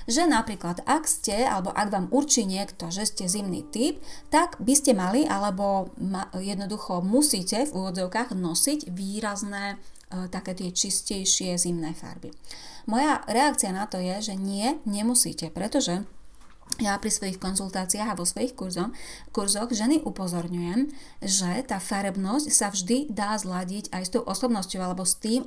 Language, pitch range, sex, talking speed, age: Slovak, 185-240 Hz, female, 150 wpm, 30-49